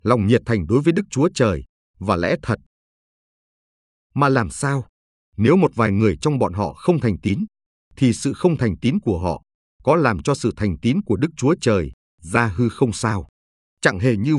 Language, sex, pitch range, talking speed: Vietnamese, male, 95-140 Hz, 200 wpm